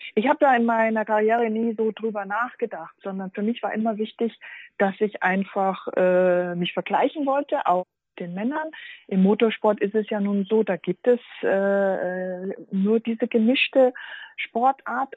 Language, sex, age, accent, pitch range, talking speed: German, female, 40-59, German, 190-230 Hz, 165 wpm